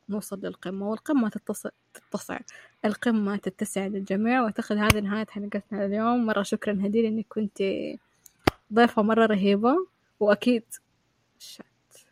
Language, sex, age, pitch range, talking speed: Arabic, female, 20-39, 200-250 Hz, 110 wpm